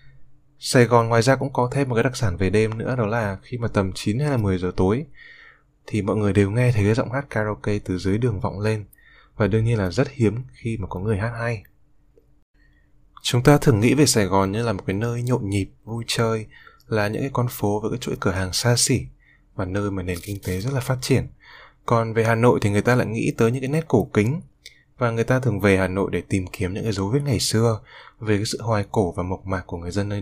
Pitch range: 100-130 Hz